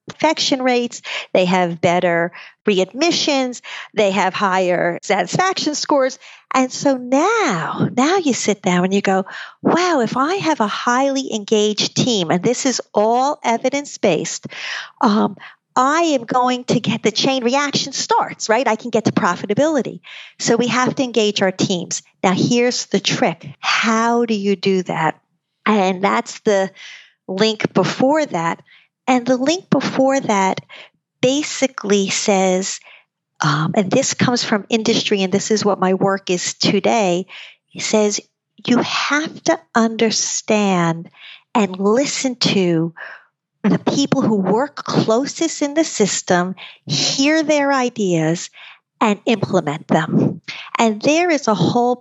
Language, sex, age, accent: English, female, 50-69, American